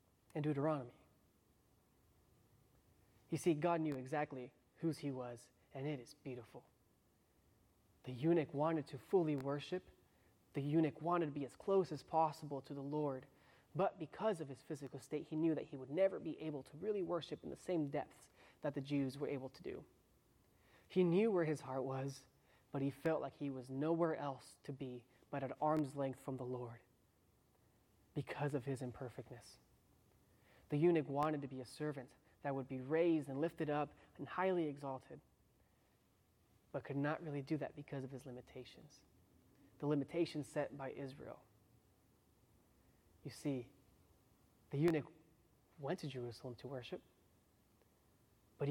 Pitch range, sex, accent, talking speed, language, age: 125-155 Hz, male, American, 160 wpm, English, 20-39